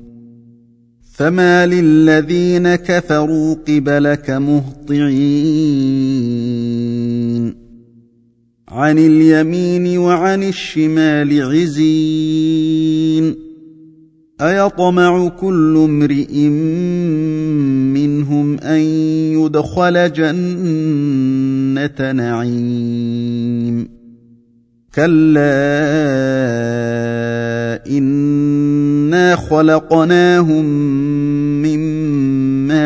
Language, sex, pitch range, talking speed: Arabic, male, 125-155 Hz, 40 wpm